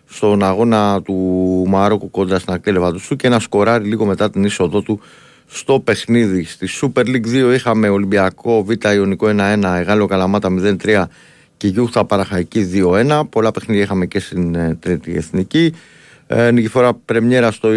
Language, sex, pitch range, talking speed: Greek, male, 95-115 Hz, 155 wpm